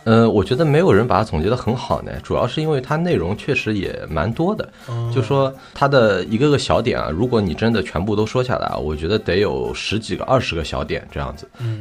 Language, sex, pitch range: Chinese, male, 90-130 Hz